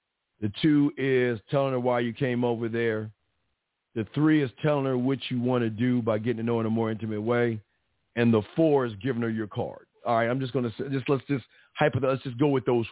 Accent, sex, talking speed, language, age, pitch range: American, male, 245 wpm, English, 50-69, 115-140 Hz